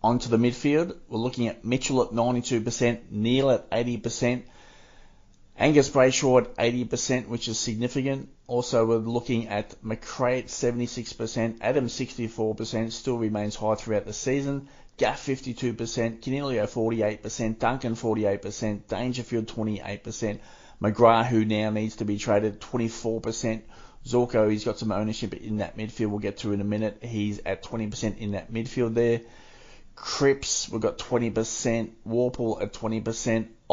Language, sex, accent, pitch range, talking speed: English, male, Australian, 105-120 Hz, 140 wpm